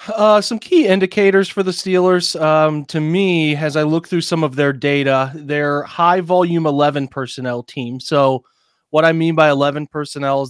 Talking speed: 185 wpm